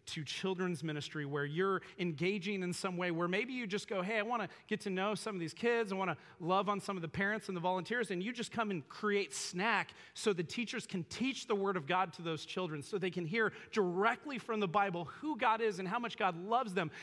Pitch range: 140-205 Hz